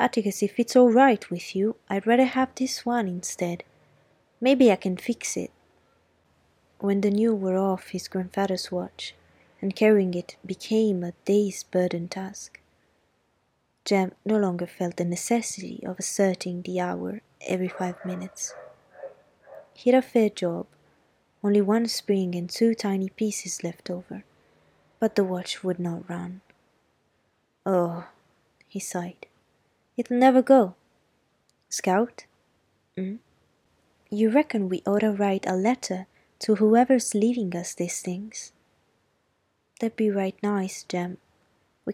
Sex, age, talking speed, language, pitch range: female, 20-39, 135 wpm, Italian, 185-230 Hz